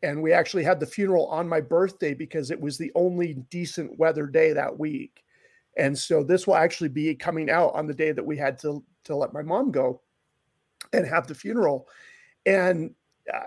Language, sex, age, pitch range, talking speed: English, male, 40-59, 155-195 Hz, 195 wpm